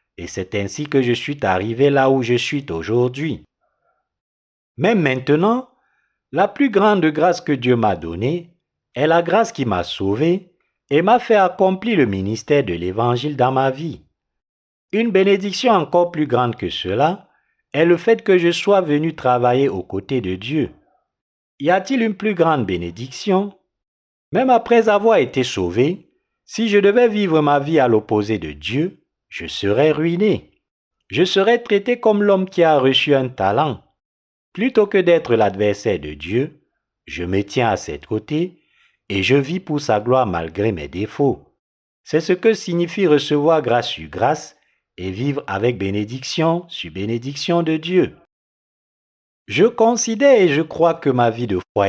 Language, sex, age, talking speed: French, male, 50-69, 160 wpm